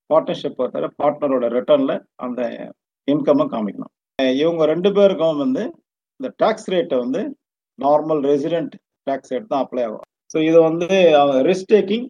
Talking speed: 140 wpm